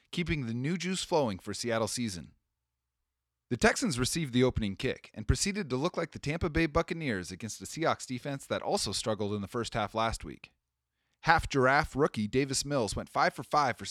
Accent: American